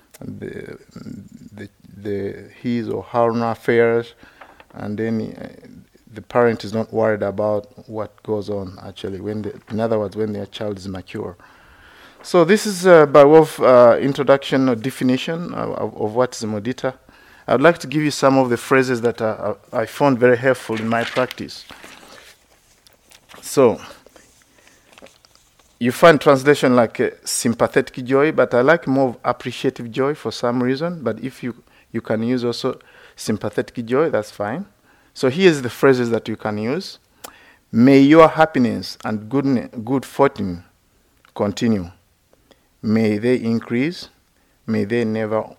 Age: 50-69